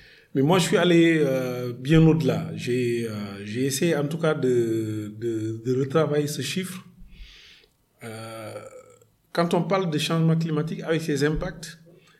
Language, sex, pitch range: French, male, 135-170 Hz